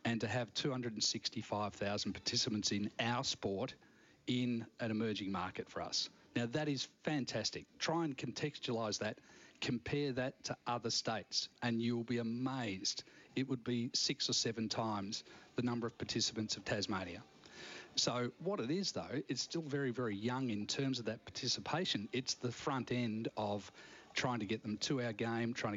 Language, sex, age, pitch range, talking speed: English, male, 40-59, 105-125 Hz, 170 wpm